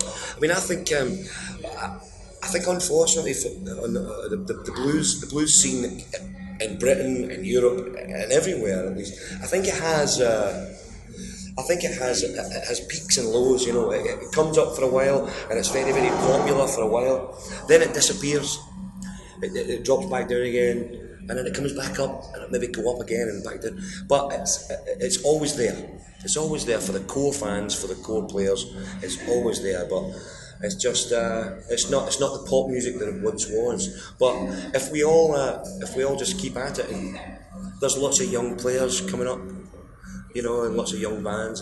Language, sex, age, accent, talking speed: Dutch, male, 30-49, British, 200 wpm